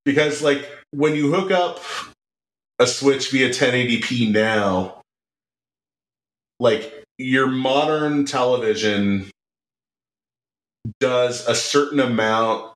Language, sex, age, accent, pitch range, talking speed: English, male, 30-49, American, 100-130 Hz, 90 wpm